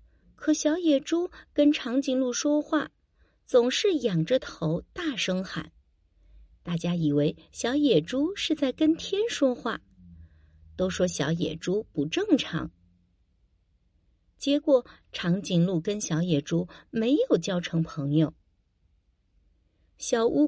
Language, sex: Chinese, female